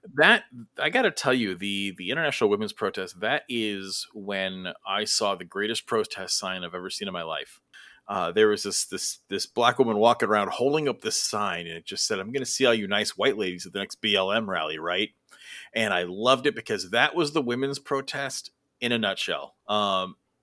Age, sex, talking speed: 30-49, male, 215 wpm